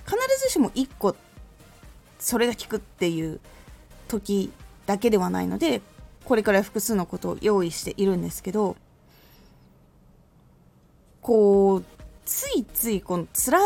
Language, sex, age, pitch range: Japanese, female, 20-39, 190-275 Hz